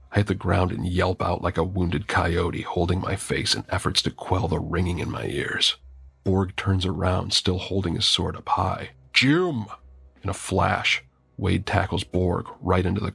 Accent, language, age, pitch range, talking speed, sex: American, English, 40-59, 85-100 Hz, 185 wpm, male